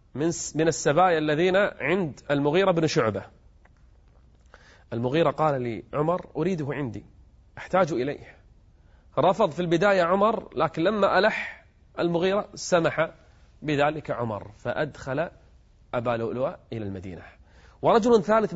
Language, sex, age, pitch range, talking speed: Arabic, male, 30-49, 95-160 Hz, 105 wpm